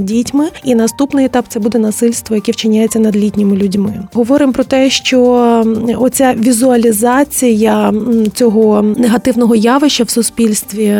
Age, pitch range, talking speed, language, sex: 20-39, 225-260 Hz, 125 wpm, Ukrainian, female